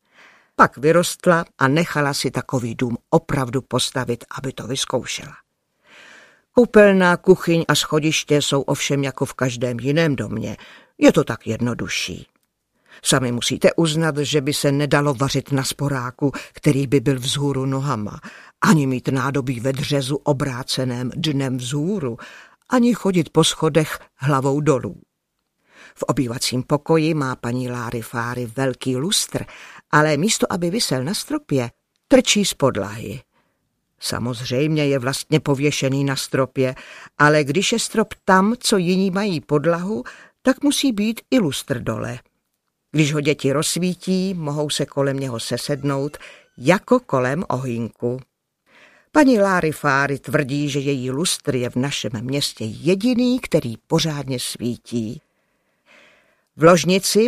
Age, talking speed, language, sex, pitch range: 50-69, 130 wpm, Czech, female, 130-170 Hz